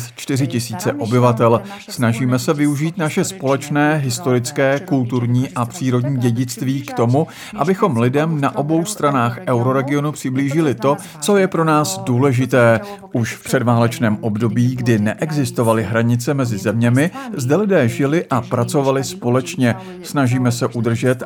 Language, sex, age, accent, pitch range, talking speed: Czech, male, 50-69, native, 120-145 Hz, 125 wpm